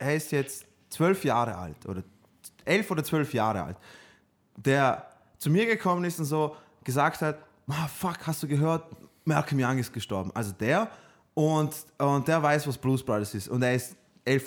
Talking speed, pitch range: 185 wpm, 120-155 Hz